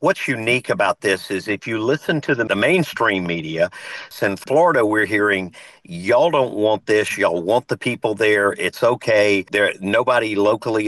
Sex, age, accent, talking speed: male, 50-69, American, 170 wpm